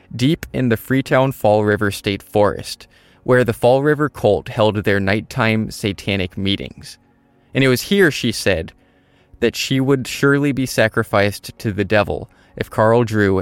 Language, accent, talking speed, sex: English, American, 160 wpm, male